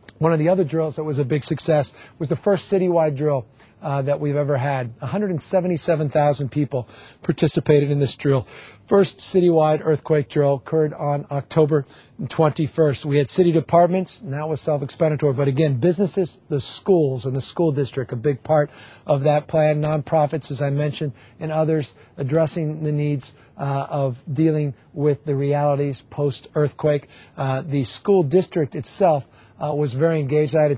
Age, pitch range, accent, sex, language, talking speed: 50-69, 135-155 Hz, American, male, English, 165 wpm